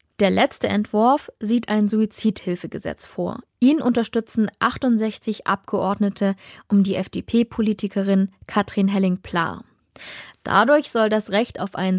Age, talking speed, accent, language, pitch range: 20-39, 110 wpm, German, German, 190-240 Hz